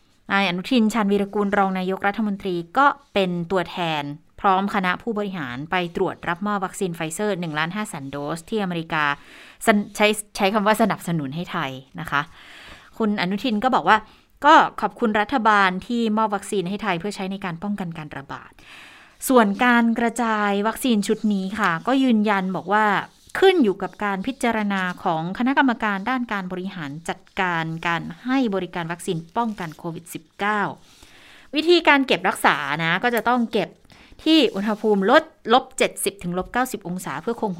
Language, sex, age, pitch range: Thai, female, 20-39, 175-220 Hz